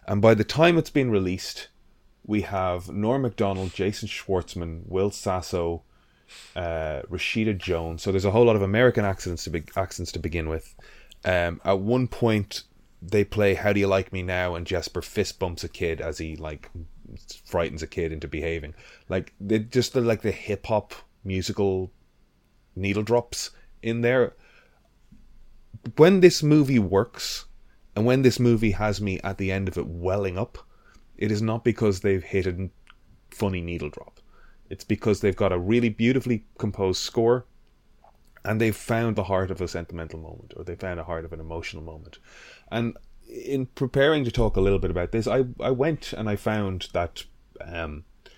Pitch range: 85-110 Hz